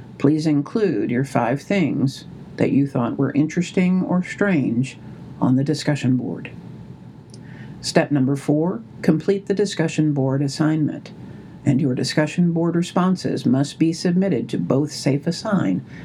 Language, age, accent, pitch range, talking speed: English, 60-79, American, 140-175 Hz, 130 wpm